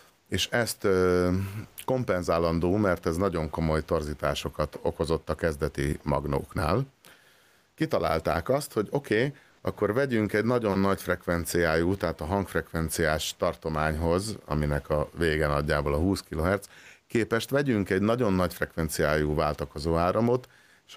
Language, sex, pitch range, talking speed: Hungarian, male, 80-105 Hz, 125 wpm